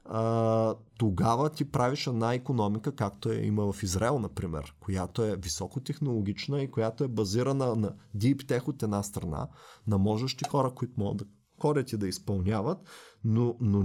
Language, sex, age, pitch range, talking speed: Bulgarian, male, 30-49, 100-135 Hz, 165 wpm